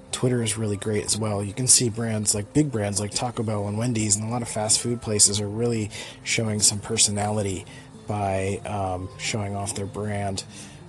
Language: English